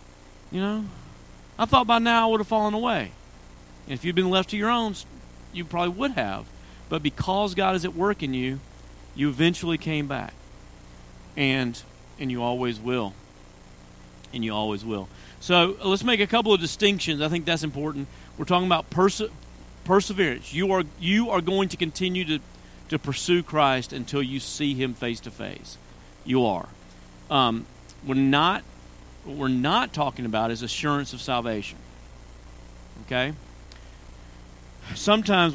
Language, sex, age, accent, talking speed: English, male, 40-59, American, 160 wpm